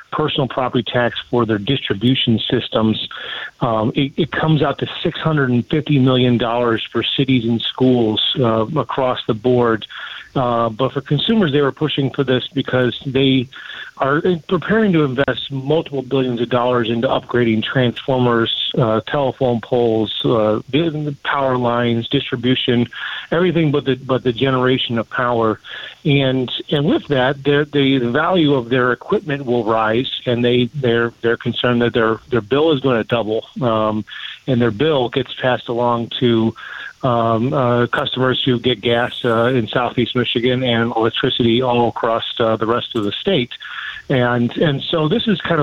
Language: English